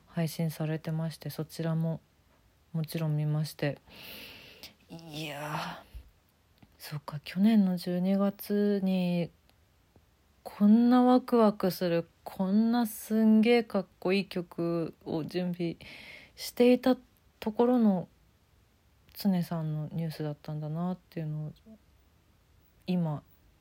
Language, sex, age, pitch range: Japanese, female, 40-59, 155-225 Hz